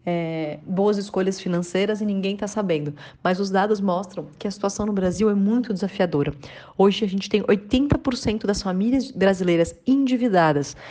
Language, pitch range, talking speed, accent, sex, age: Portuguese, 180-230 Hz, 160 wpm, Brazilian, female, 30-49